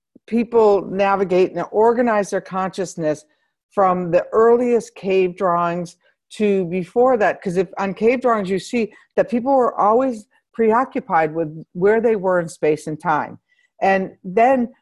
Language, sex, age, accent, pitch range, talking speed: English, female, 50-69, American, 165-225 Hz, 145 wpm